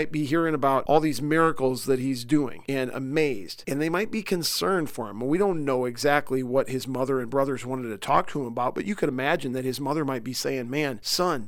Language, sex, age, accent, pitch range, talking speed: English, male, 40-59, American, 130-170 Hz, 235 wpm